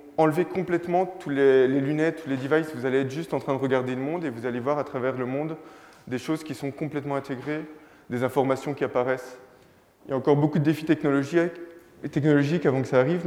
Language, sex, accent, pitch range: French, male, French, 125-155 Hz